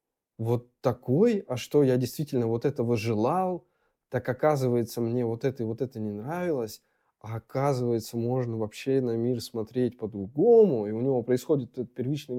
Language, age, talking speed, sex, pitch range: Russian, 20-39, 160 wpm, male, 110-145 Hz